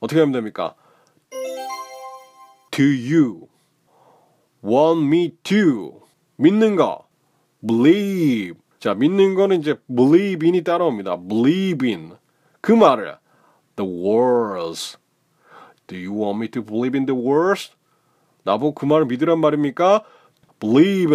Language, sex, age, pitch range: Korean, male, 30-49, 130-200 Hz